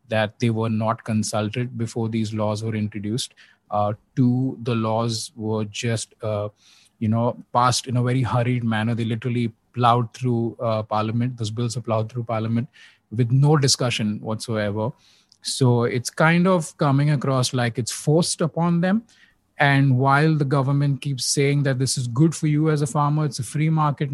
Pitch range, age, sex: 110-135 Hz, 20-39, male